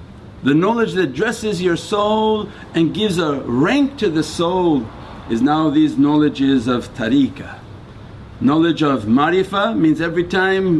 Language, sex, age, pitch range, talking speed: English, male, 50-69, 115-180 Hz, 140 wpm